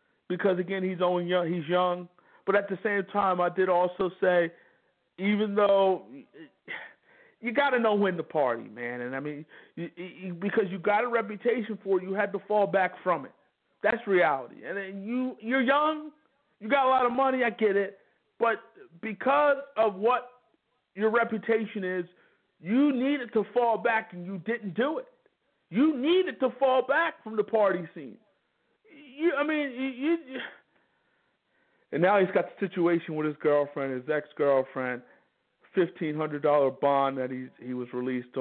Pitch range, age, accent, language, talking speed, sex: 150-225 Hz, 50-69, American, English, 175 wpm, male